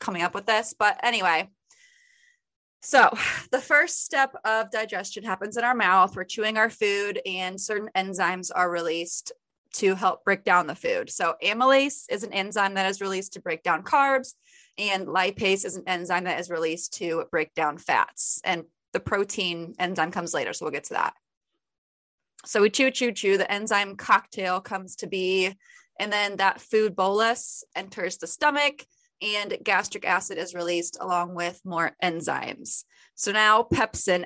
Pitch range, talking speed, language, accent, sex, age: 180-230 Hz, 170 wpm, English, American, female, 20-39